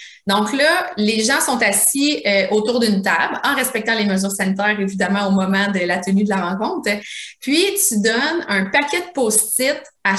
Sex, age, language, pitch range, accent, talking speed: female, 30-49, French, 210-270 Hz, Canadian, 190 wpm